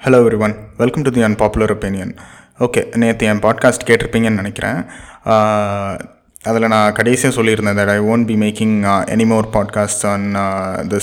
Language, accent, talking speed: Tamil, native, 165 wpm